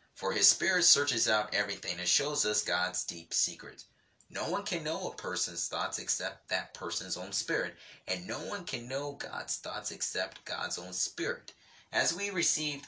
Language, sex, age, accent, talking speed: English, male, 30-49, American, 175 wpm